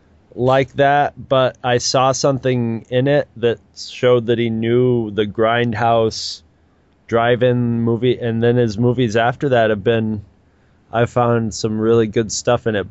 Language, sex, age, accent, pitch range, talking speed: English, male, 20-39, American, 105-125 Hz, 155 wpm